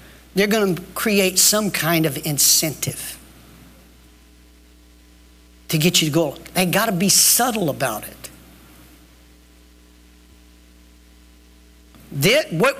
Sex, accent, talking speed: male, American, 100 wpm